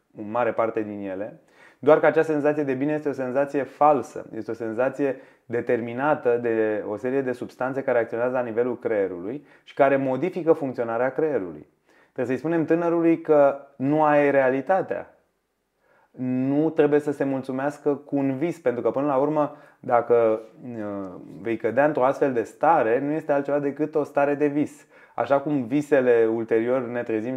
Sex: male